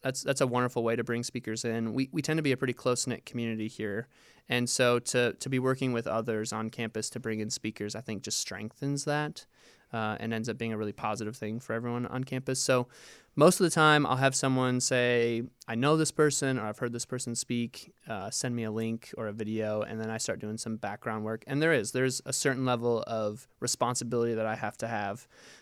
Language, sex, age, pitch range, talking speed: English, male, 20-39, 110-130 Hz, 235 wpm